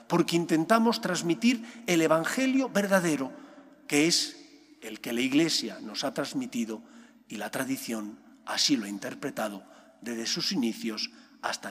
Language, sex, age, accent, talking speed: English, male, 40-59, Spanish, 135 wpm